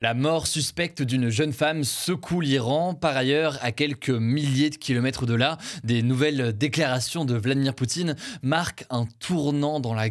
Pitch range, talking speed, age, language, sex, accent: 125-160 Hz, 165 wpm, 20-39, French, male, French